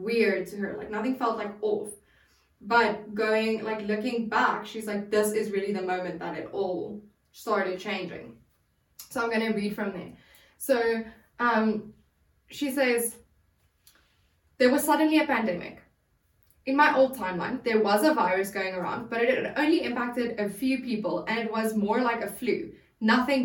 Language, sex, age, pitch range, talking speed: English, female, 10-29, 205-260 Hz, 170 wpm